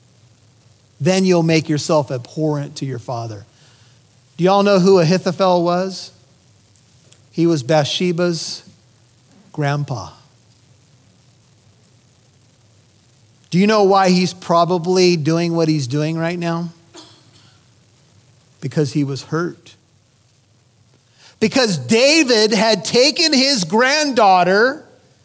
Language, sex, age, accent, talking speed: English, male, 40-59, American, 95 wpm